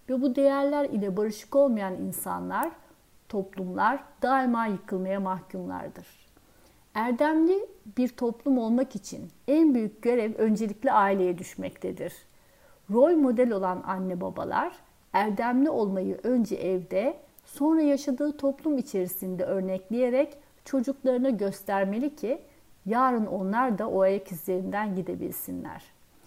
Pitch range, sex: 195-275 Hz, female